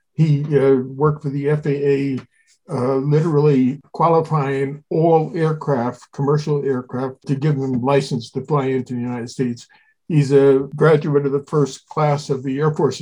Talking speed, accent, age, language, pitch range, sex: 155 wpm, American, 50-69, English, 135-155 Hz, male